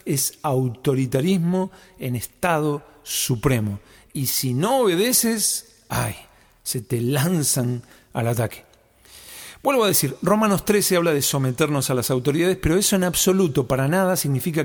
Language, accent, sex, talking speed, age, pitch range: Spanish, Argentinian, male, 135 wpm, 50-69, 125-180 Hz